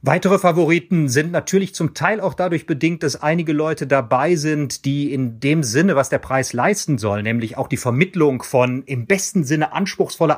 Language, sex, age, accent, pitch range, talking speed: German, male, 40-59, German, 125-150 Hz, 185 wpm